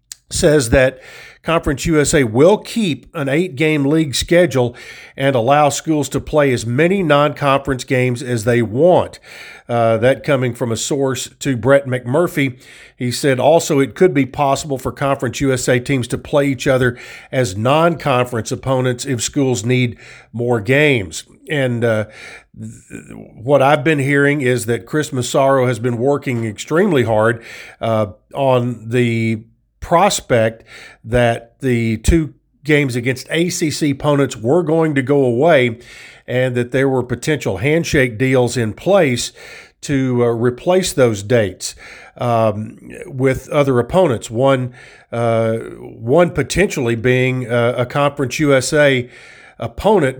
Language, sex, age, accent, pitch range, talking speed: English, male, 50-69, American, 120-145 Hz, 135 wpm